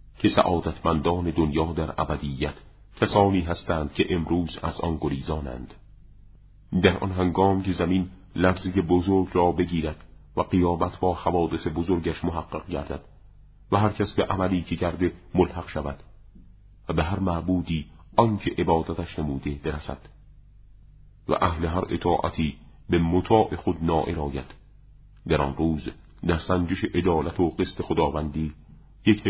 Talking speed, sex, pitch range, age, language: 135 wpm, male, 75-95 Hz, 40-59, Persian